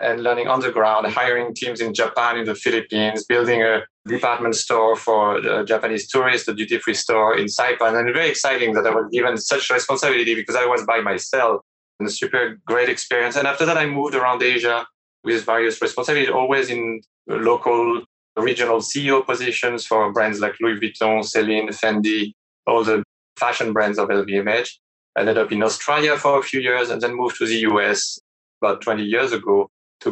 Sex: male